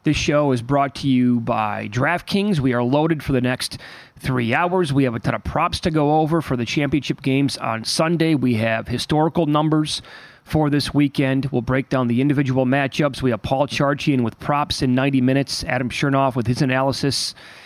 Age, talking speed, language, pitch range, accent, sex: 30-49, 195 wpm, English, 125-145 Hz, American, male